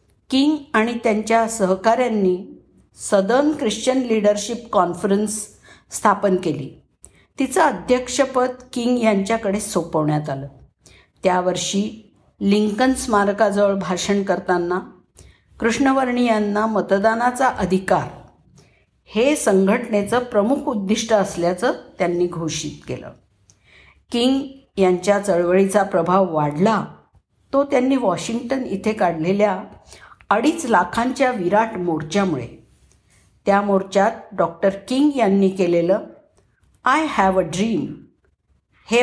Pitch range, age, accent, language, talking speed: 175-230 Hz, 50-69, native, Marathi, 90 wpm